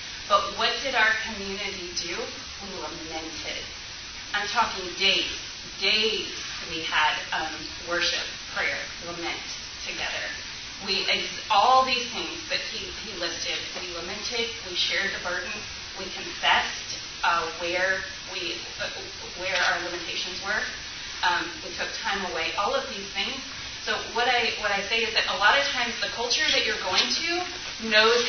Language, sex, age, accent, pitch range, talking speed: English, female, 30-49, American, 190-245 Hz, 155 wpm